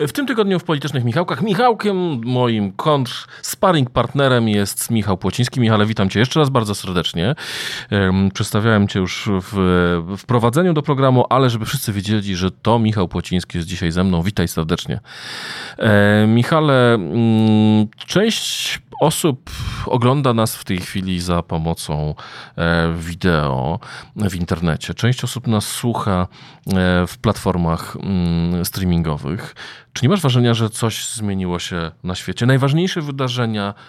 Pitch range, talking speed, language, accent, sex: 95-130 Hz, 130 wpm, Polish, native, male